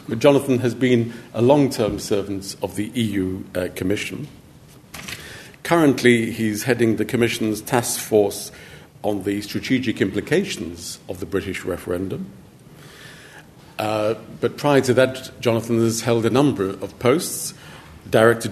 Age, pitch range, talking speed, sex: 50-69, 100-125 Hz, 130 wpm, male